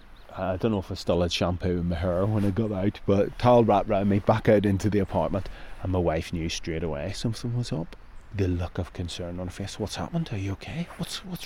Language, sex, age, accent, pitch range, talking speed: English, male, 30-49, British, 90-110 Hz, 250 wpm